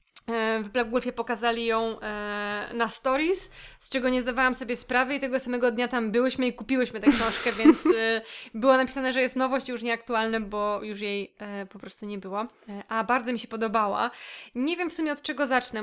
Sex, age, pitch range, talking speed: female, 20-39, 215-255 Hz, 190 wpm